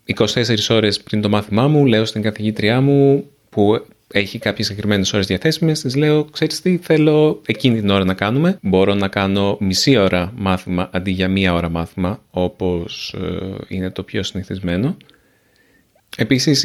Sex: male